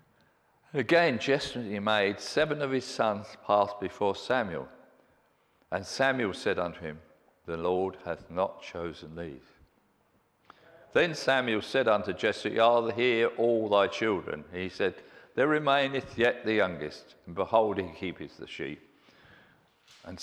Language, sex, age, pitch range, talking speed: English, male, 50-69, 105-130 Hz, 135 wpm